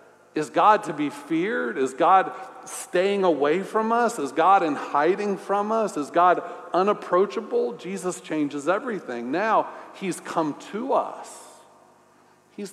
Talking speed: 135 wpm